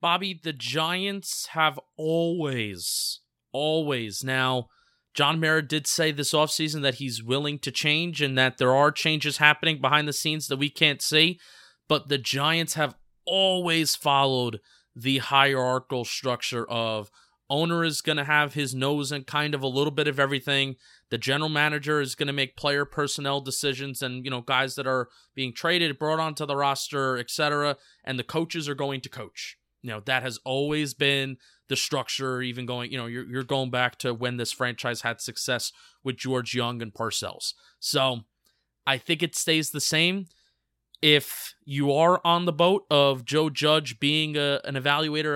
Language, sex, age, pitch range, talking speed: English, male, 20-39, 130-155 Hz, 175 wpm